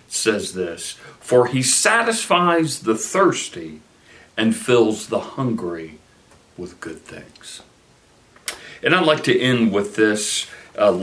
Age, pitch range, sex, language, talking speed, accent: 60-79, 100-125 Hz, male, English, 120 wpm, American